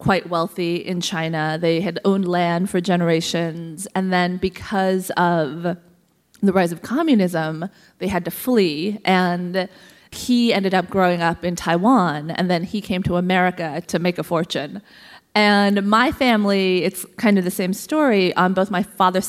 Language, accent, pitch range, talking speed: English, American, 175-200 Hz, 165 wpm